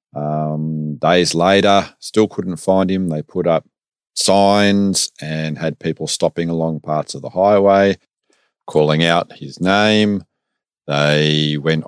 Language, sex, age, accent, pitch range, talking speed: English, male, 40-59, Australian, 80-105 Hz, 130 wpm